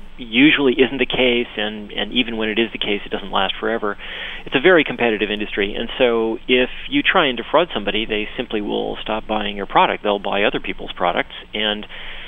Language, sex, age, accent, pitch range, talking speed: English, male, 40-59, American, 100-120 Hz, 205 wpm